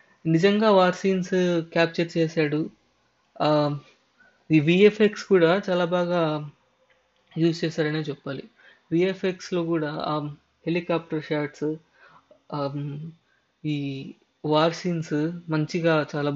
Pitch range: 150-180 Hz